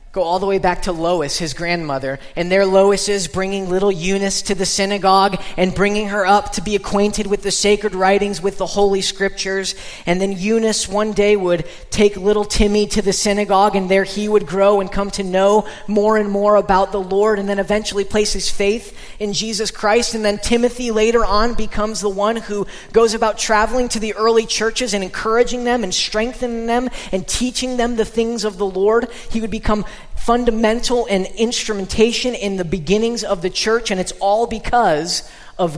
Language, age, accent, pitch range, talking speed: English, 20-39, American, 160-210 Hz, 195 wpm